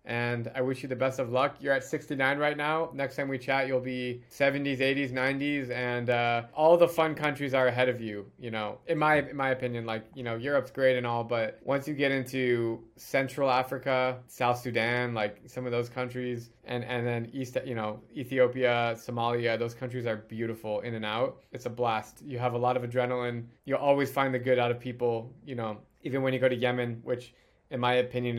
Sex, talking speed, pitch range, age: male, 220 wpm, 120-135 Hz, 20-39